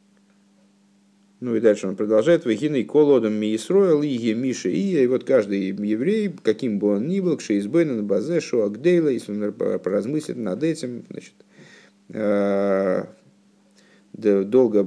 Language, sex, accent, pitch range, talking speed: Russian, male, native, 100-130 Hz, 130 wpm